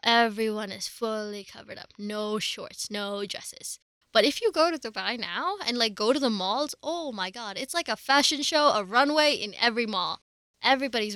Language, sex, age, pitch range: English, female, 10-29, 200-255 Hz